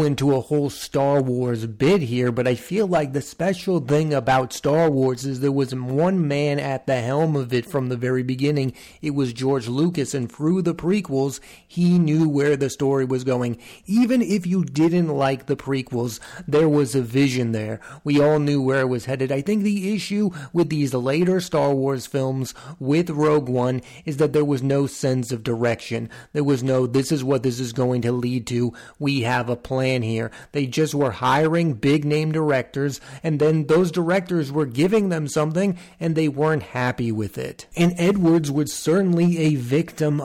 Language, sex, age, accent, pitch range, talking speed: English, male, 30-49, American, 130-160 Hz, 195 wpm